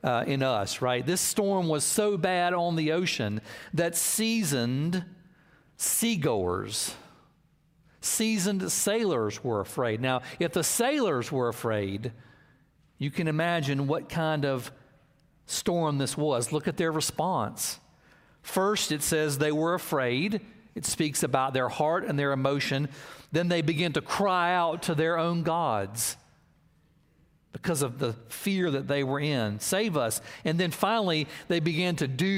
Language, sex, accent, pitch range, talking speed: English, male, American, 135-175 Hz, 145 wpm